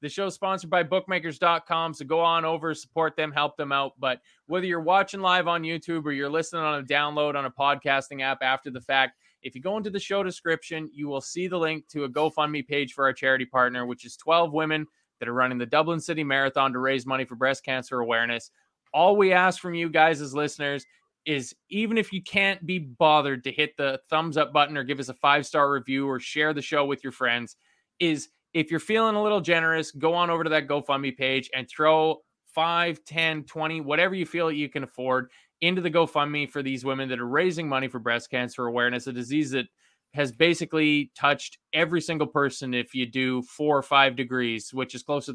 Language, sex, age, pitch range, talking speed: English, male, 20-39, 135-165 Hz, 220 wpm